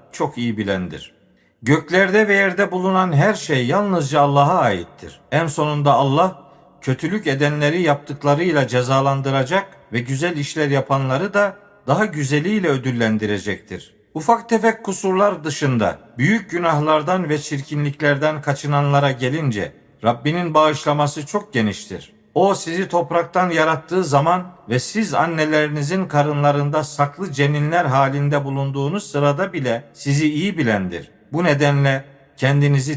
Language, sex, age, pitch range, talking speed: Turkish, male, 50-69, 135-175 Hz, 115 wpm